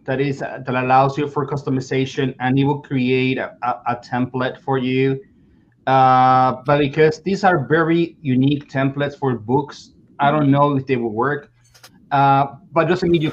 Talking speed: 175 wpm